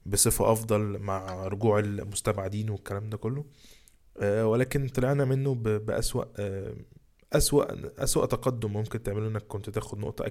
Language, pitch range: Arabic, 100-115 Hz